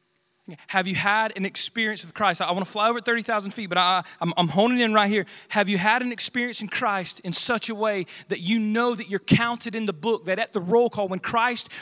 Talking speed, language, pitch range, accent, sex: 250 wpm, English, 195-235 Hz, American, male